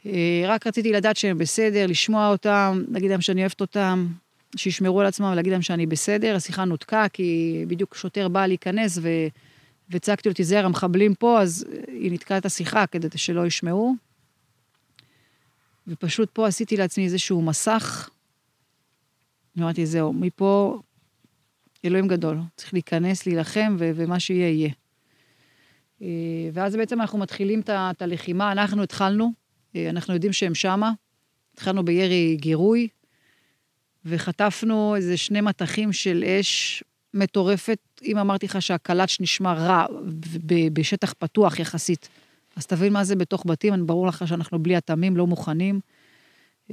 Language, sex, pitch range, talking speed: Hebrew, female, 165-200 Hz, 135 wpm